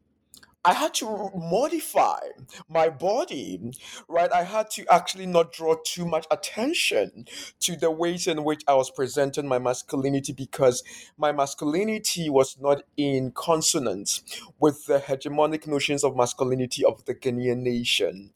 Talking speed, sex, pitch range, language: 140 wpm, male, 140-195 Hz, English